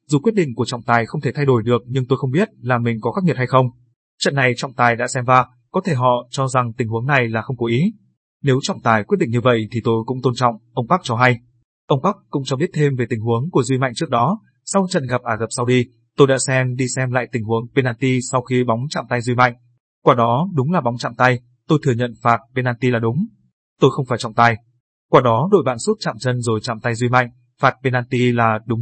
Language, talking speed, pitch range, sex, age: Vietnamese, 270 wpm, 120-140 Hz, male, 20-39